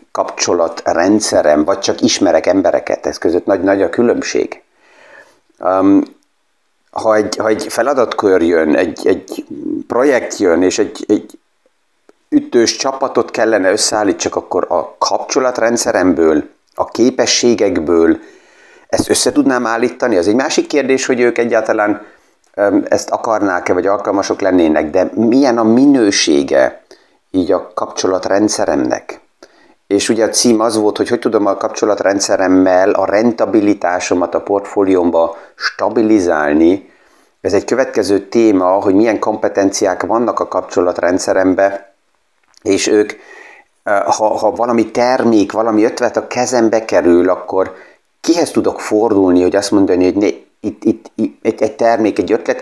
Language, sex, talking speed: Hungarian, male, 125 wpm